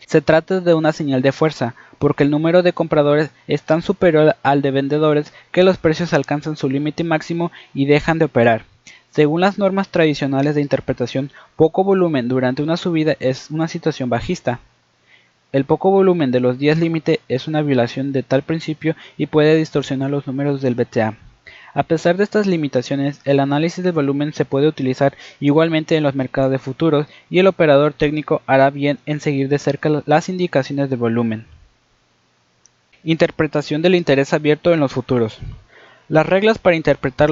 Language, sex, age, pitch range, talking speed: Spanish, male, 20-39, 135-160 Hz, 170 wpm